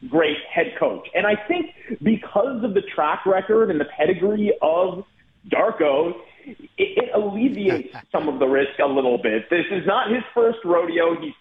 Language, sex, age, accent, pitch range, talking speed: English, male, 40-59, American, 165-225 Hz, 175 wpm